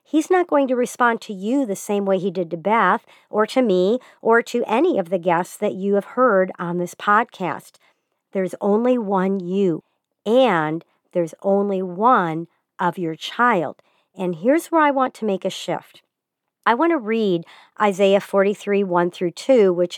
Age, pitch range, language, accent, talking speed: 50-69, 180-235 Hz, English, American, 180 wpm